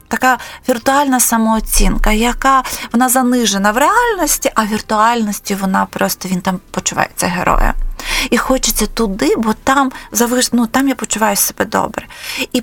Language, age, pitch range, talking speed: Ukrainian, 30-49, 195-250 Hz, 135 wpm